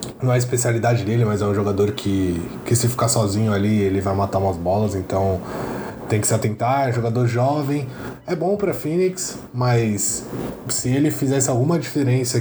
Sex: male